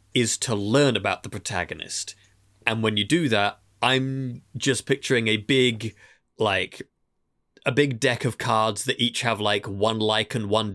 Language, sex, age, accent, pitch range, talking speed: English, male, 30-49, British, 105-135 Hz, 165 wpm